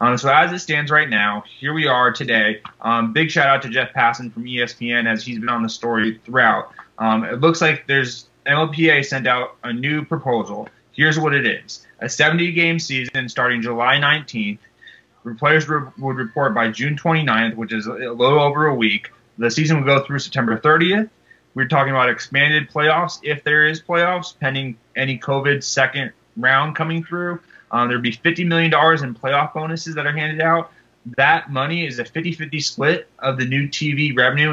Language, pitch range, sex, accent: English, 120-150 Hz, male, American